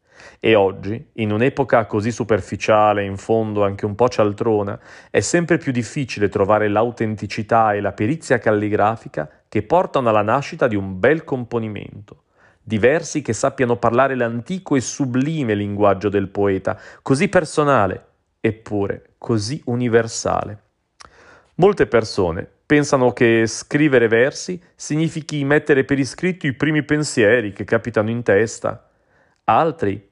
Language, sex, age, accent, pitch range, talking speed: Italian, male, 40-59, native, 105-135 Hz, 130 wpm